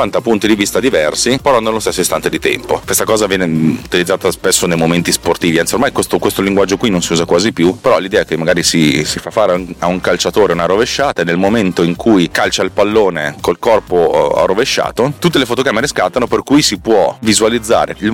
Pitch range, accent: 90-120 Hz, native